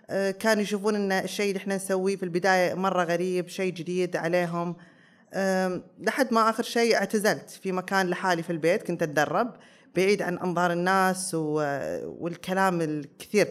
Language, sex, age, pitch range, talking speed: Arabic, female, 20-39, 170-200 Hz, 145 wpm